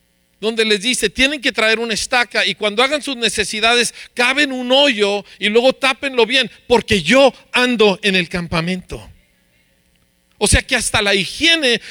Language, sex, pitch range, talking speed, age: Spanish, male, 195-255 Hz, 160 wpm, 50-69